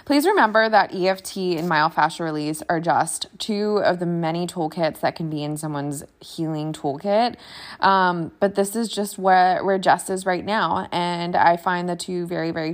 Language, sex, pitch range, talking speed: English, female, 160-185 Hz, 185 wpm